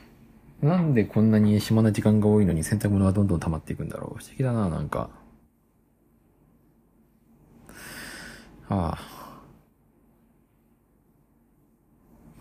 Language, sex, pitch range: Japanese, male, 85-120 Hz